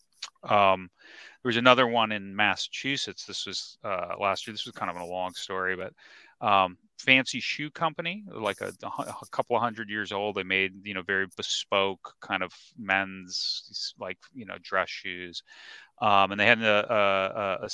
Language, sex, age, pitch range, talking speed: English, male, 30-49, 95-110 Hz, 180 wpm